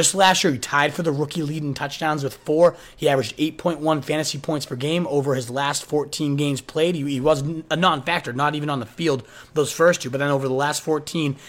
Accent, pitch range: American, 140-170 Hz